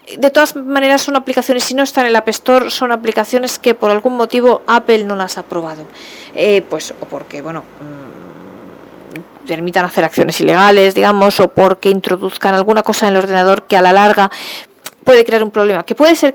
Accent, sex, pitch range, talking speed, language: Spanish, female, 175-225 Hz, 195 wpm, Spanish